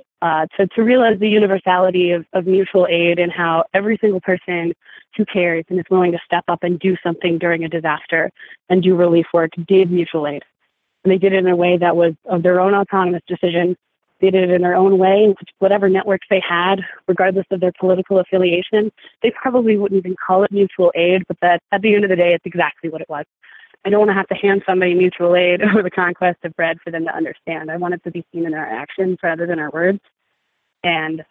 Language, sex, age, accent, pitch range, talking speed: English, female, 20-39, American, 170-190 Hz, 230 wpm